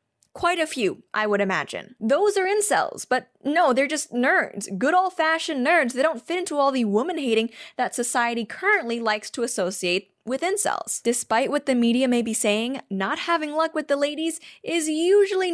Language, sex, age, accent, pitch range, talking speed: English, female, 10-29, American, 220-310 Hz, 180 wpm